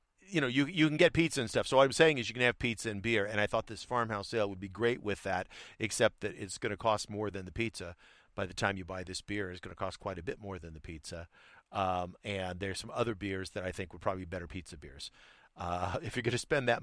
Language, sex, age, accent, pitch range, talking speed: English, male, 50-69, American, 85-110 Hz, 290 wpm